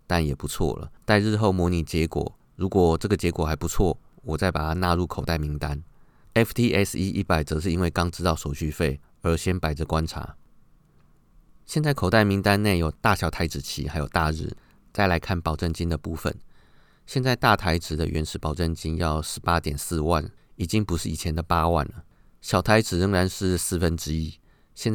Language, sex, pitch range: Chinese, male, 80-95 Hz